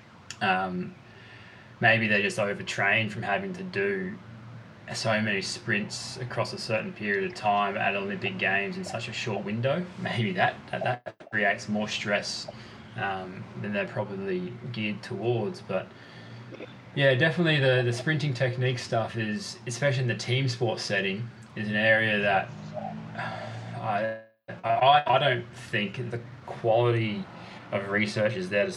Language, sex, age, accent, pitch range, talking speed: English, male, 20-39, Australian, 105-125 Hz, 145 wpm